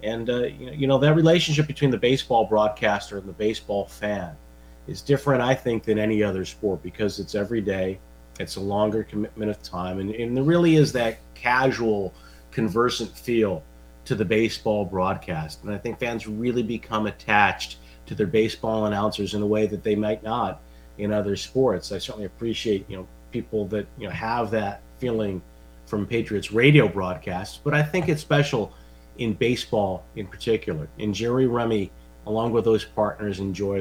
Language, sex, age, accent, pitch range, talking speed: English, male, 40-59, American, 95-115 Hz, 175 wpm